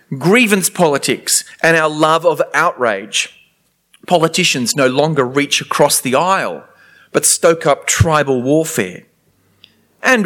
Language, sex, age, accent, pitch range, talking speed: English, male, 30-49, Australian, 140-195 Hz, 115 wpm